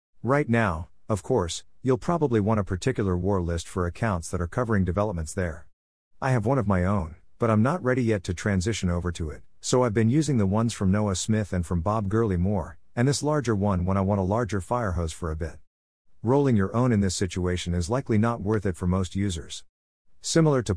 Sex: male